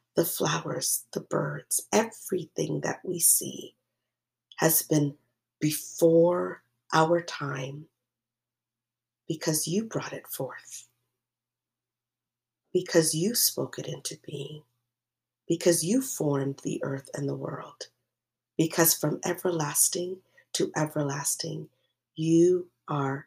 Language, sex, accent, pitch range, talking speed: English, female, American, 125-175 Hz, 100 wpm